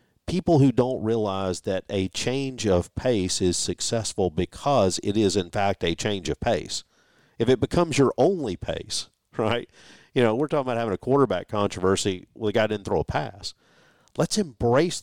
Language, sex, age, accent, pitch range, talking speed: English, male, 50-69, American, 110-150 Hz, 180 wpm